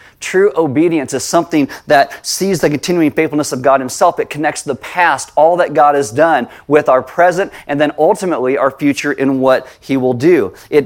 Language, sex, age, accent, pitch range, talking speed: English, male, 30-49, American, 135-175 Hz, 195 wpm